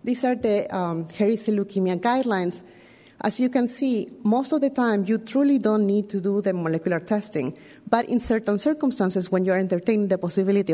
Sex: female